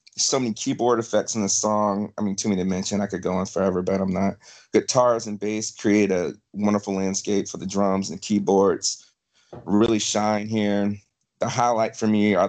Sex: male